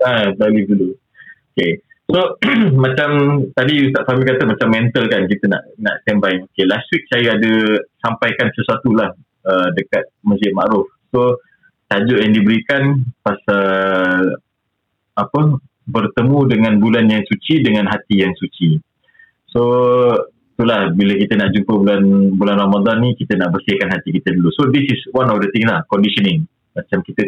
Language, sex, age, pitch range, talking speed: Malay, male, 30-49, 105-135 Hz, 155 wpm